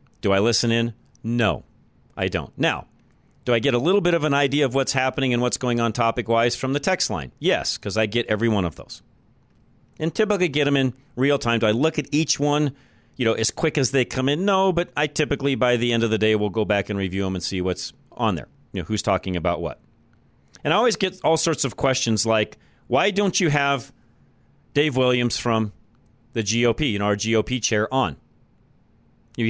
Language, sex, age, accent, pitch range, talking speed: English, male, 40-59, American, 115-150 Hz, 225 wpm